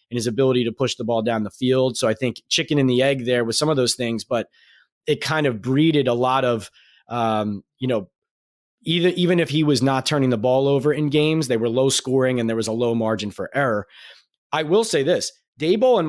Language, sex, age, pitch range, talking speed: English, male, 30-49, 115-150 Hz, 240 wpm